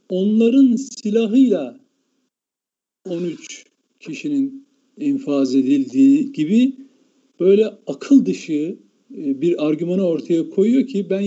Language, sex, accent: Turkish, male, native